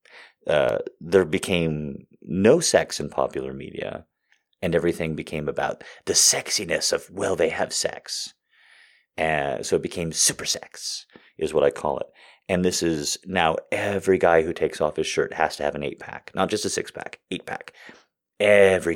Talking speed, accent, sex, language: 165 wpm, American, male, English